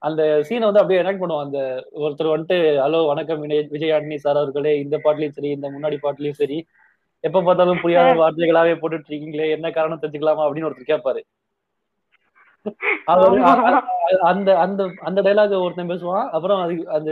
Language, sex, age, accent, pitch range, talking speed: Tamil, male, 20-39, native, 150-200 Hz, 90 wpm